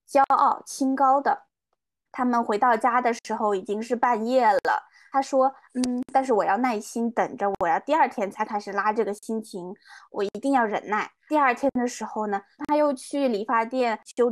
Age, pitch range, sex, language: 20-39, 215-265 Hz, female, Chinese